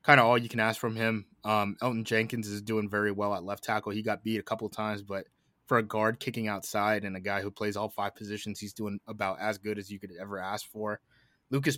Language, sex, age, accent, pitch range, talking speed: English, male, 20-39, American, 105-115 Hz, 260 wpm